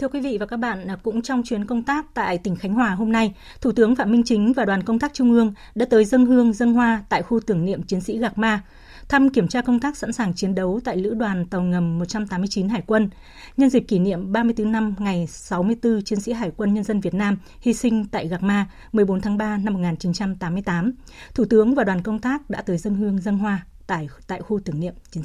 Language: Vietnamese